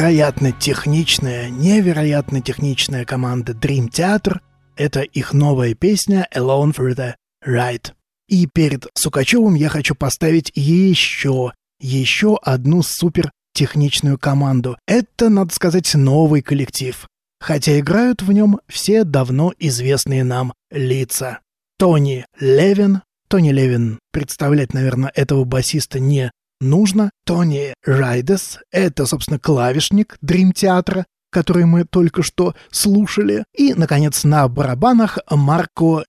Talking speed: 115 wpm